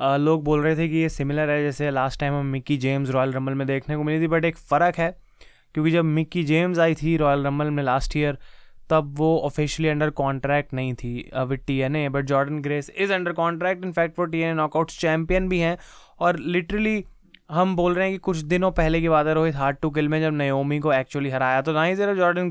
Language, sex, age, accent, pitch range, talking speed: Hindi, male, 20-39, native, 145-175 Hz, 225 wpm